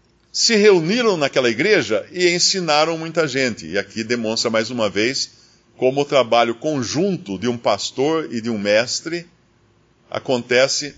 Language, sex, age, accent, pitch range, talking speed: Portuguese, male, 50-69, Brazilian, 115-155 Hz, 140 wpm